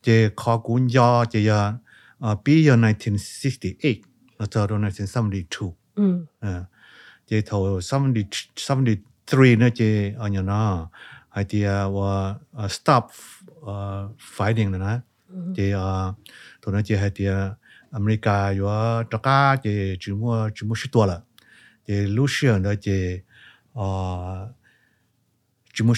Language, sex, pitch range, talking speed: English, male, 100-115 Hz, 30 wpm